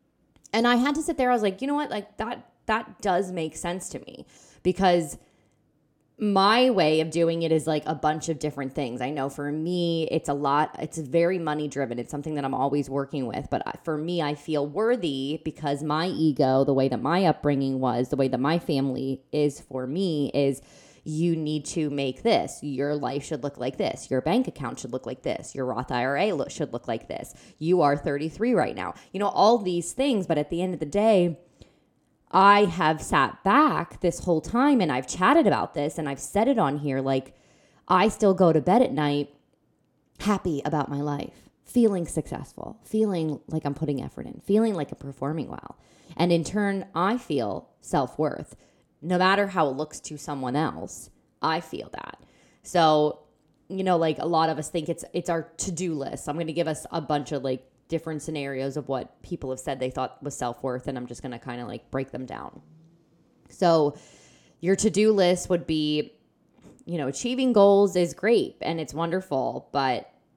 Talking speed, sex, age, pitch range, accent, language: 205 wpm, female, 20-39, 140-180 Hz, American, English